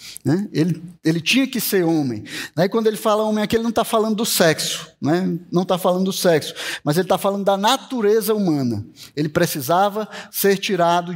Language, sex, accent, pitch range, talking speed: Portuguese, male, Brazilian, 175-225 Hz, 190 wpm